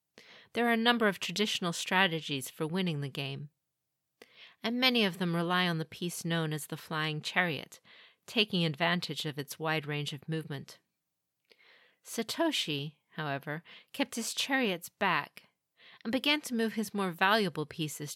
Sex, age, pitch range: female, 40-59, 160-220 Hz